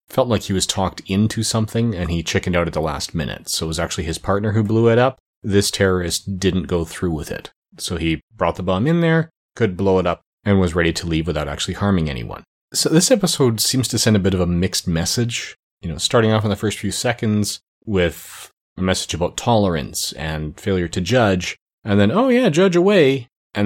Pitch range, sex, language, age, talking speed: 85-110 Hz, male, English, 30-49, 225 wpm